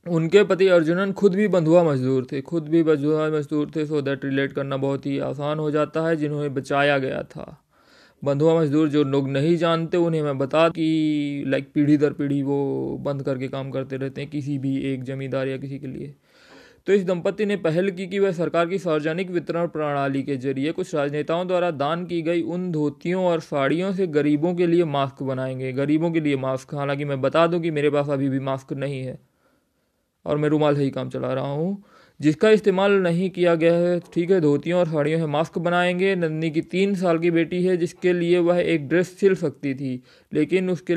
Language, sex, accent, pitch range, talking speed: Hindi, male, native, 140-175 Hz, 210 wpm